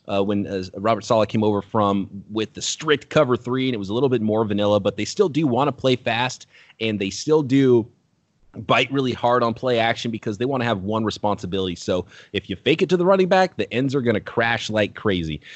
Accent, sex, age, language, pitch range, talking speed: American, male, 30-49, English, 100-130 Hz, 245 wpm